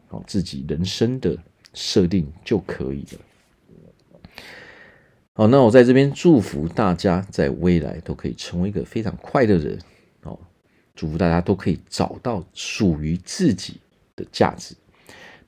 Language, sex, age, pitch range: Chinese, male, 40-59, 85-110 Hz